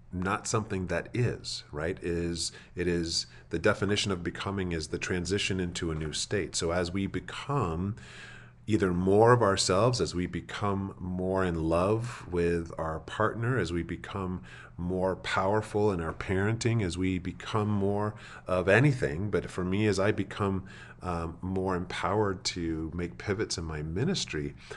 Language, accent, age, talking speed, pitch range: English, American, 40-59, 155 wpm, 85-105 Hz